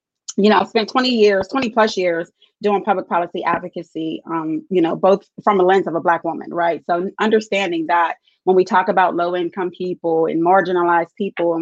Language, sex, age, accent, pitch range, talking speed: English, female, 30-49, American, 175-205 Hz, 200 wpm